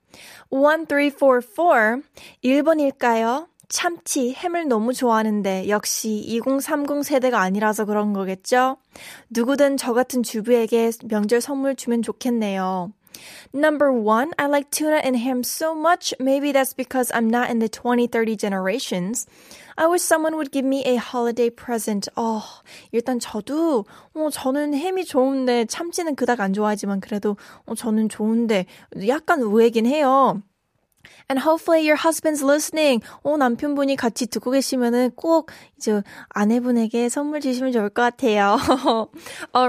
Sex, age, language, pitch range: female, 20-39, Korean, 230-290 Hz